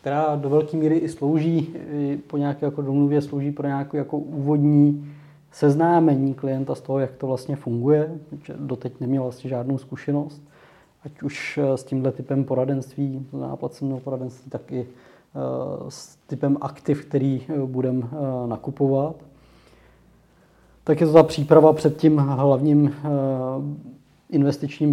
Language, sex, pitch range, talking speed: Czech, male, 130-145 Hz, 130 wpm